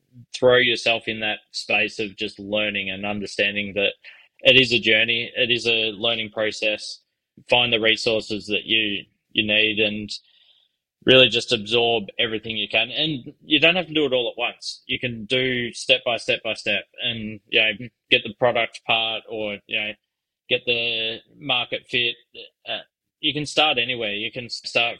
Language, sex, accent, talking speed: English, male, Australian, 170 wpm